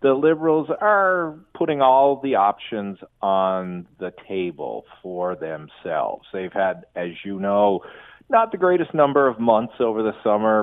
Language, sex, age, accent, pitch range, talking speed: English, male, 40-59, American, 95-140 Hz, 145 wpm